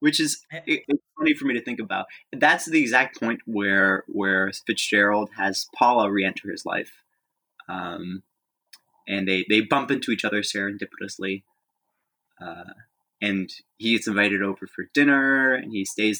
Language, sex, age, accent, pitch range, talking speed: English, male, 20-39, American, 100-120 Hz, 150 wpm